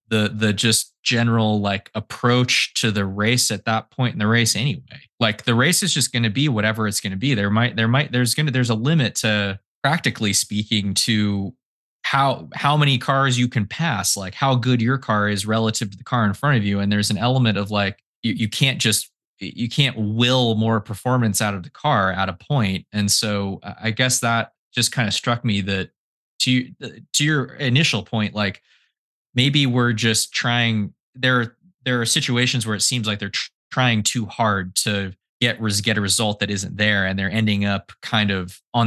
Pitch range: 100-125 Hz